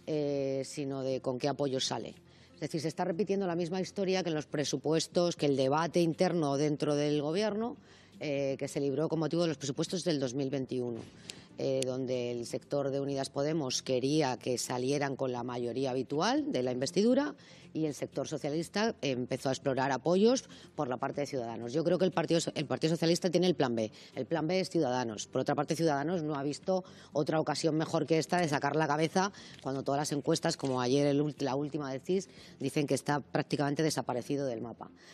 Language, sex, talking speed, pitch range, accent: Spanish, female, 200 wpm, 140-190 Hz, Spanish